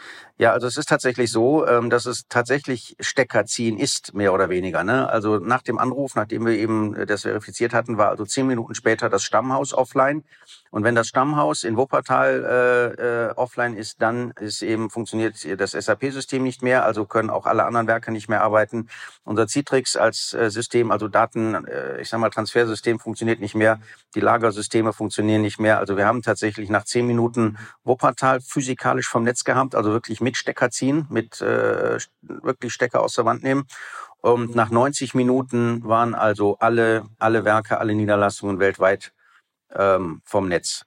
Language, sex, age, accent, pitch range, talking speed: German, male, 50-69, German, 105-120 Hz, 170 wpm